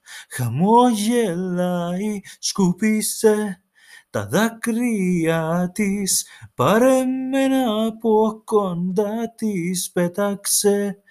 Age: 30-49